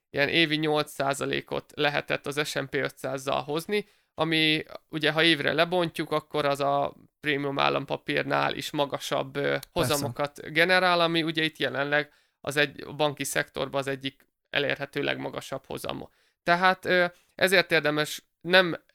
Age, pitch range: 30-49, 140-170 Hz